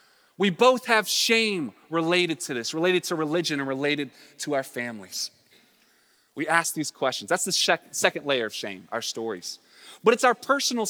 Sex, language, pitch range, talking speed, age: male, English, 140-200 Hz, 170 wpm, 20-39